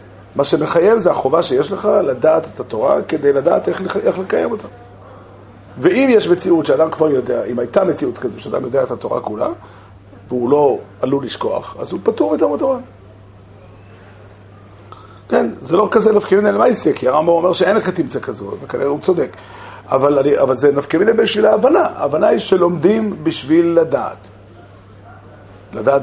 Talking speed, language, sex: 160 wpm, Hebrew, male